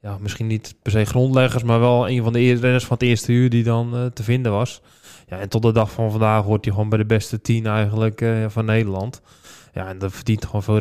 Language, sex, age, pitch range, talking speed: Dutch, male, 20-39, 110-120 Hz, 255 wpm